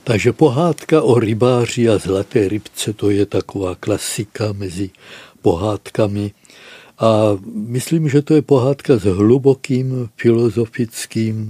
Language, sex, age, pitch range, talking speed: Czech, male, 60-79, 105-125 Hz, 115 wpm